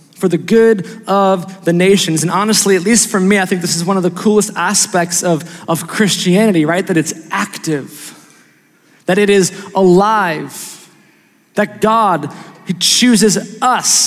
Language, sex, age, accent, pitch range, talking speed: English, male, 20-39, American, 190-240 Hz, 160 wpm